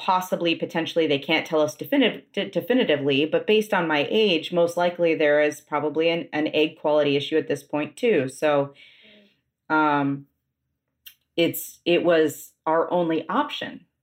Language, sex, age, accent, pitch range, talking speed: English, female, 30-49, American, 145-170 Hz, 150 wpm